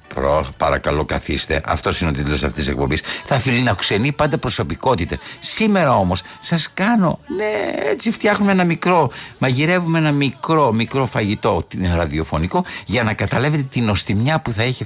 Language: Greek